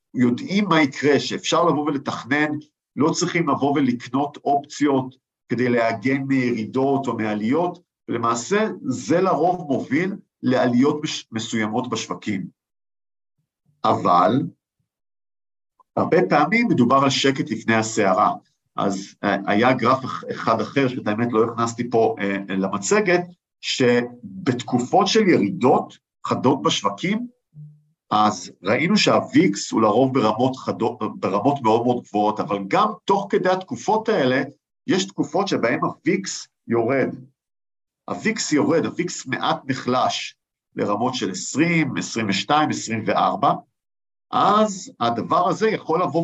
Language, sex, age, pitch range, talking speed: Hebrew, male, 50-69, 120-175 Hz, 110 wpm